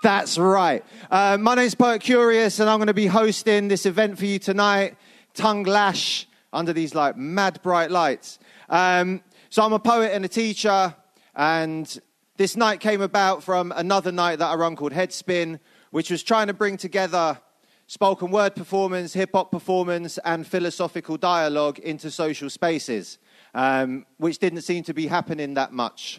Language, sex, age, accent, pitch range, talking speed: English, male, 30-49, British, 160-205 Hz, 165 wpm